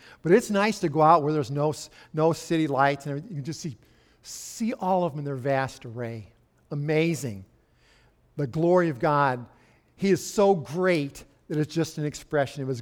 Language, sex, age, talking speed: English, male, 50-69, 195 wpm